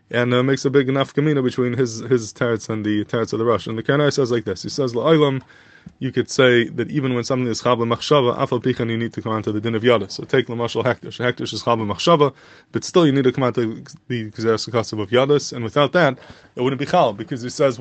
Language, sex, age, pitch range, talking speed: English, male, 20-39, 120-145 Hz, 260 wpm